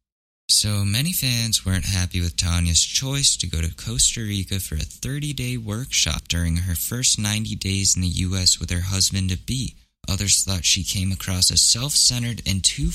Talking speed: 170 wpm